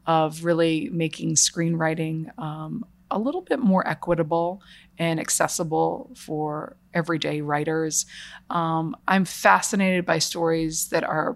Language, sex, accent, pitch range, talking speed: English, female, American, 165-195 Hz, 115 wpm